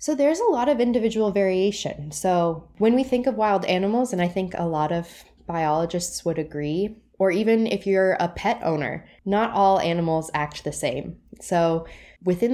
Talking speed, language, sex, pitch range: 180 wpm, English, female, 160-200 Hz